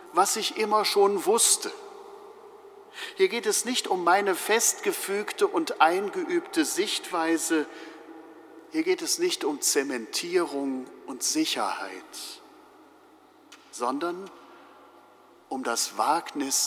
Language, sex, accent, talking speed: German, male, German, 95 wpm